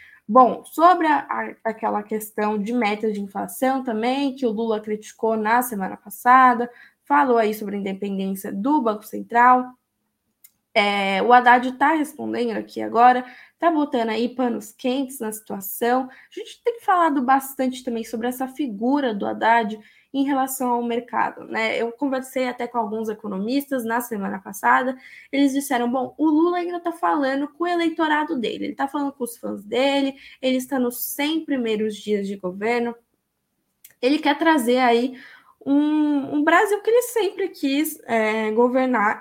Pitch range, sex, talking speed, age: 225-290 Hz, female, 155 wpm, 10-29